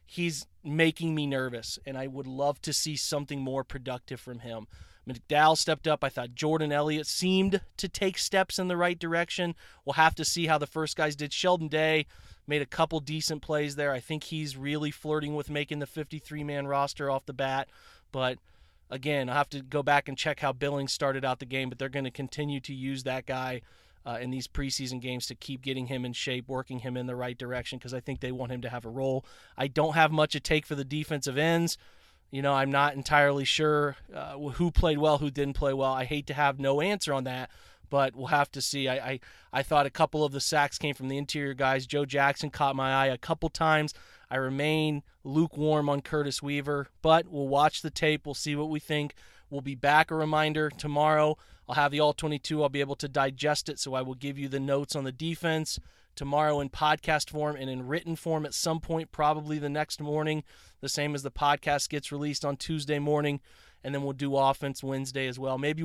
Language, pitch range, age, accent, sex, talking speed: English, 135-155 Hz, 30-49, American, male, 225 wpm